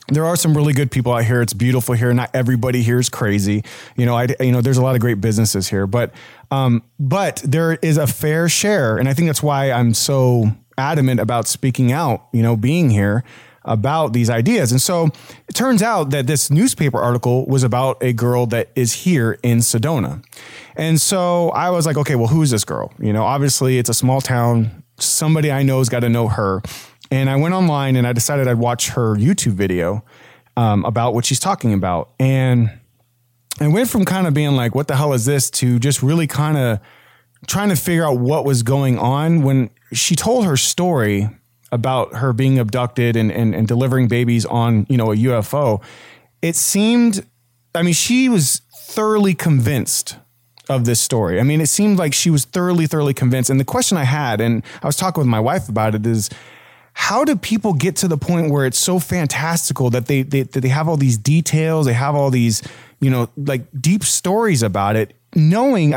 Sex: male